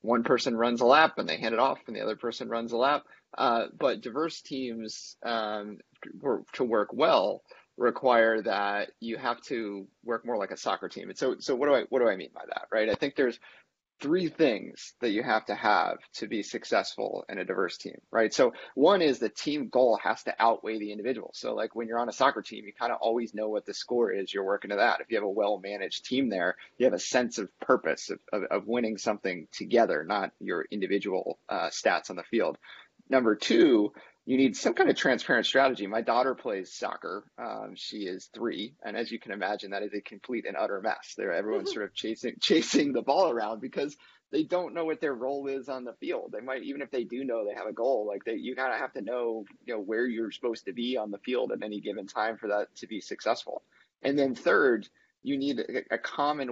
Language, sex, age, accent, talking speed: English, male, 30-49, American, 235 wpm